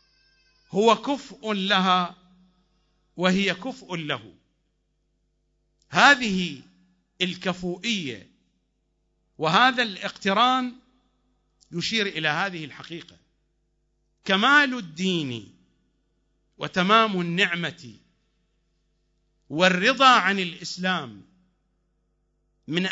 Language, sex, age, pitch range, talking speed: English, male, 50-69, 150-215 Hz, 60 wpm